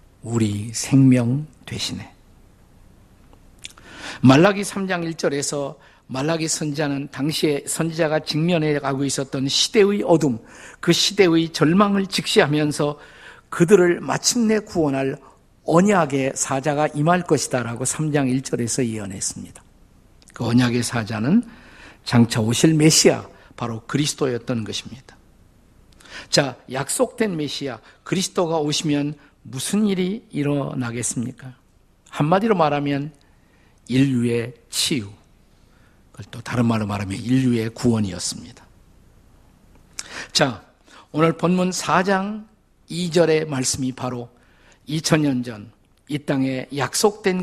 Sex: male